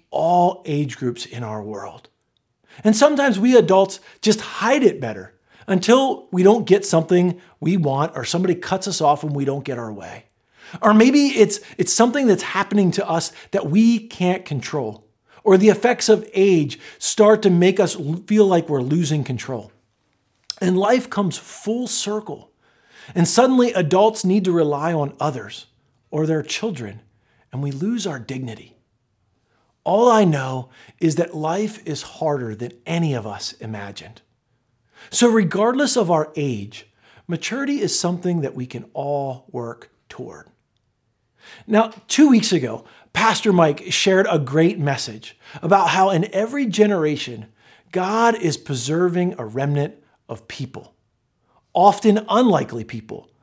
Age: 40-59